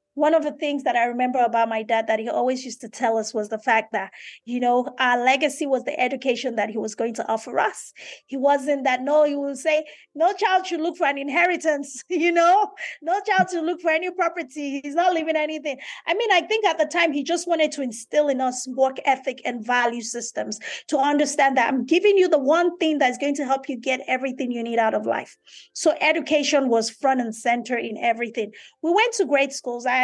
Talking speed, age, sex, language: 230 wpm, 30-49, female, Swahili